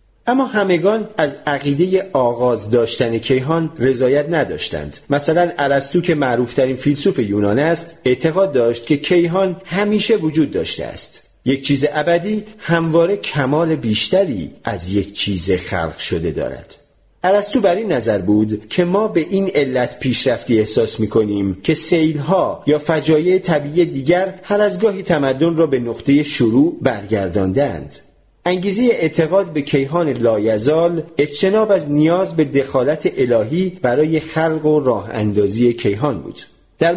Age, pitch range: 40-59, 125-180 Hz